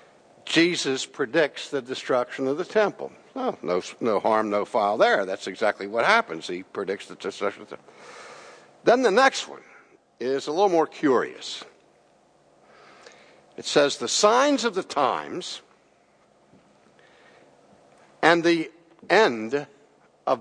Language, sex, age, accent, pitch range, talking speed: English, male, 60-79, American, 125-170 Hz, 125 wpm